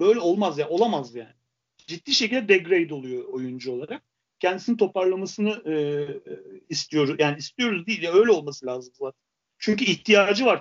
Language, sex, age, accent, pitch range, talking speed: Turkish, male, 40-59, native, 160-225 Hz, 155 wpm